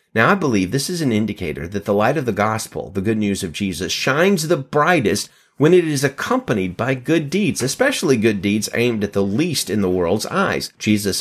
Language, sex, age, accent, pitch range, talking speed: English, male, 30-49, American, 100-135 Hz, 215 wpm